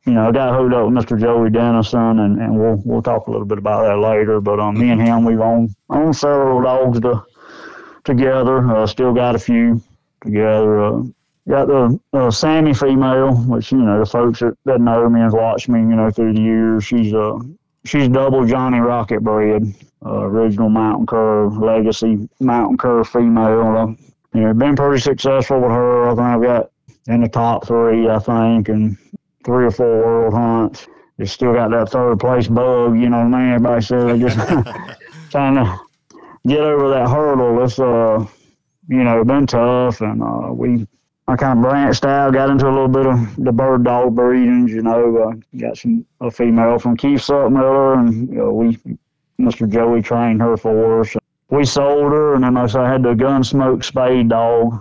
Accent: American